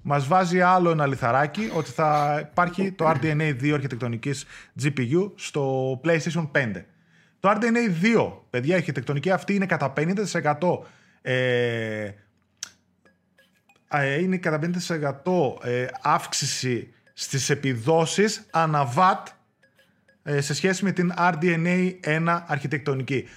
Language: Greek